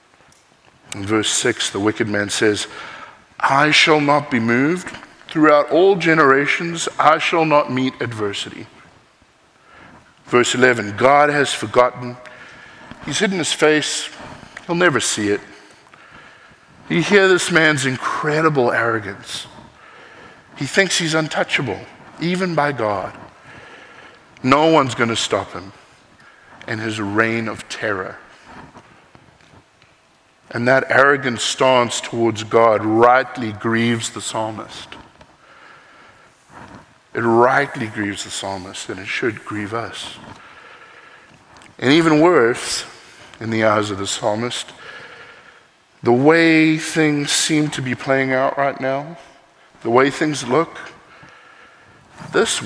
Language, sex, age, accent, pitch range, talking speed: English, male, 50-69, American, 115-155 Hz, 115 wpm